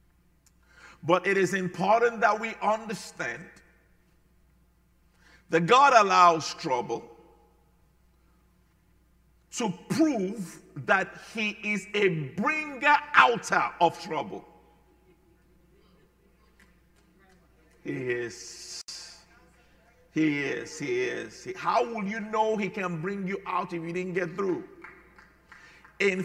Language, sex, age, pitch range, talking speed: English, male, 50-69, 175-215 Hz, 95 wpm